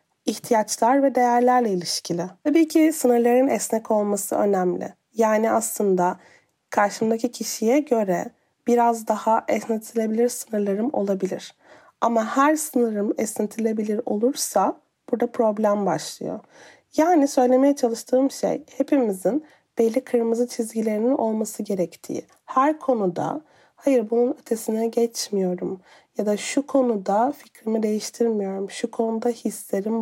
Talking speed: 105 wpm